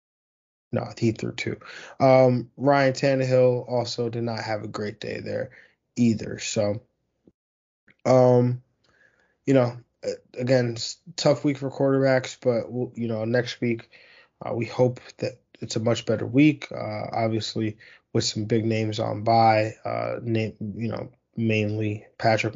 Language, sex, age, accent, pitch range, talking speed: English, male, 20-39, American, 110-125 Hz, 140 wpm